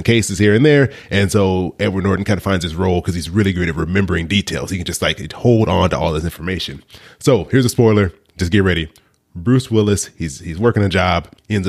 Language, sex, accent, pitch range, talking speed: English, male, American, 80-100 Hz, 230 wpm